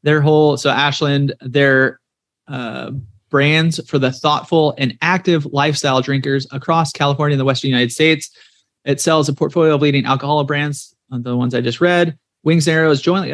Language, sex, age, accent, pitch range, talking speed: English, male, 30-49, American, 125-150 Hz, 175 wpm